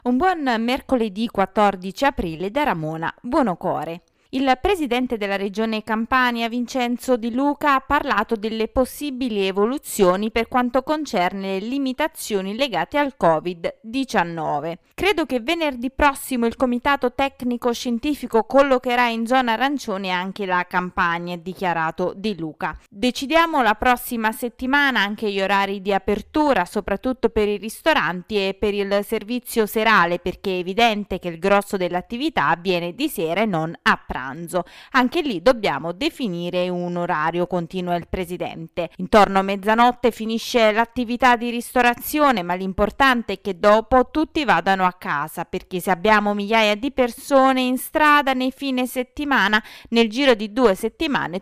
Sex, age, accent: female, 20-39, native